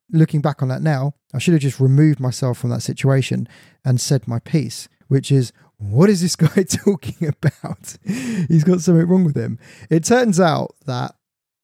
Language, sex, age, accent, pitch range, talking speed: English, male, 20-39, British, 125-155 Hz, 185 wpm